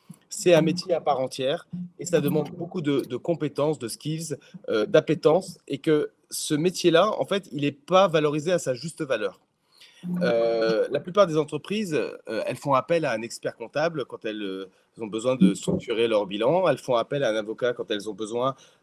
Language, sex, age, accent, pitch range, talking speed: French, male, 30-49, French, 130-185 Hz, 200 wpm